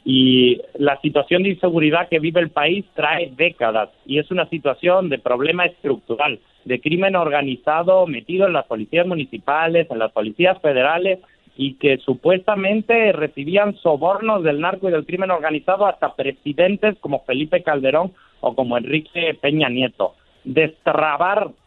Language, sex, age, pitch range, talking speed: Spanish, male, 50-69, 140-180 Hz, 145 wpm